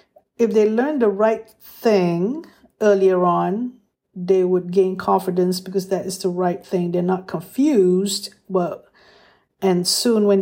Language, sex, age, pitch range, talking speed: English, female, 50-69, 180-210 Hz, 145 wpm